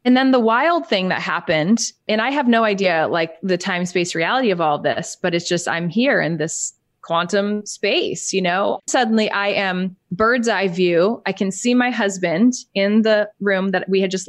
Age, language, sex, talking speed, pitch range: 20-39, English, female, 200 wpm, 185-235 Hz